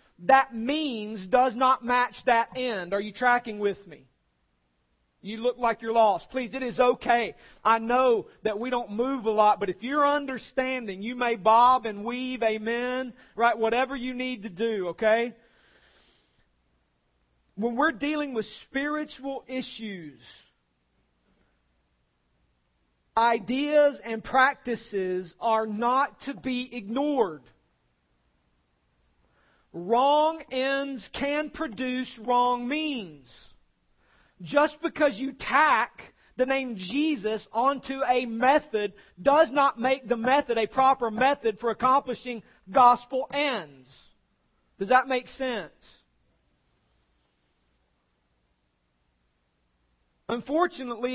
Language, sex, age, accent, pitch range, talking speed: English, male, 40-59, American, 190-260 Hz, 110 wpm